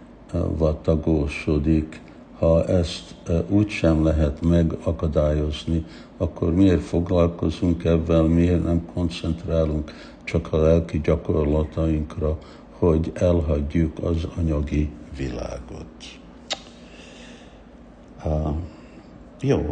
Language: Hungarian